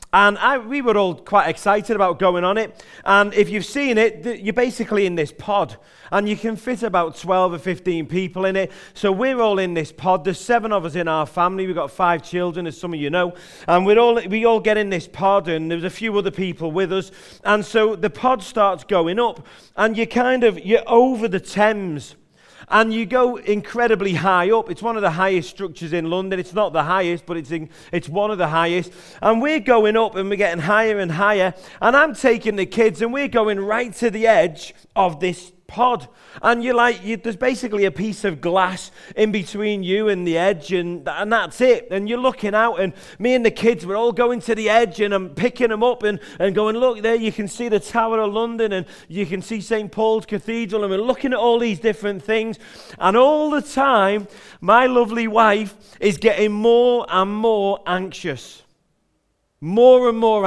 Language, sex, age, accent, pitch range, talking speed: English, male, 30-49, British, 185-230 Hz, 220 wpm